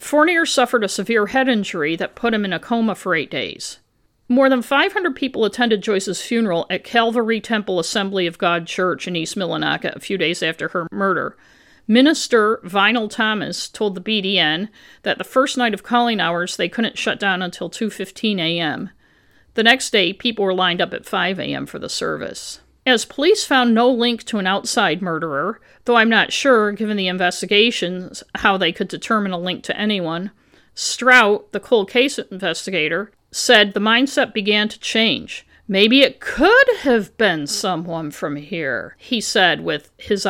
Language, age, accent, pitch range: English, 50-69, American, 185-240 Hz